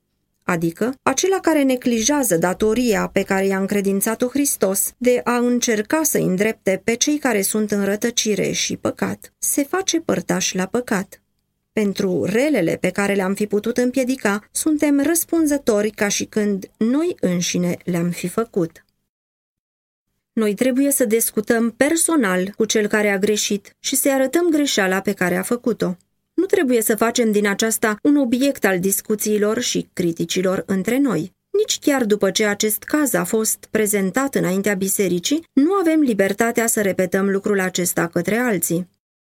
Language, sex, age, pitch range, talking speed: Romanian, female, 20-39, 195-260 Hz, 150 wpm